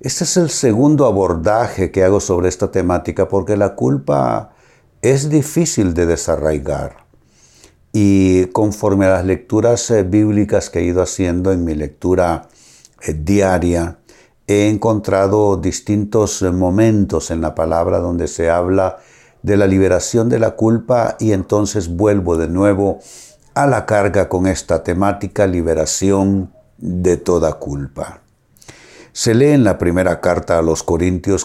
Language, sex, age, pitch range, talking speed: Spanish, male, 60-79, 90-110 Hz, 135 wpm